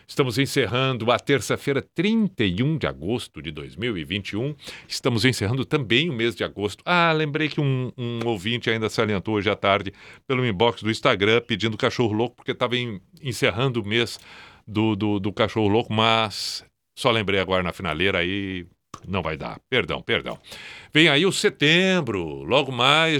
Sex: male